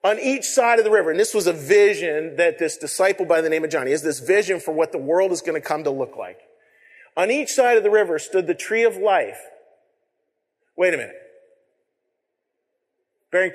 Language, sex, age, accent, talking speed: English, male, 40-59, American, 215 wpm